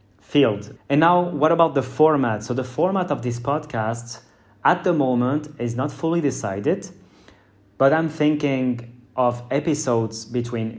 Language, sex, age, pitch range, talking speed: English, male, 30-49, 120-140 Hz, 145 wpm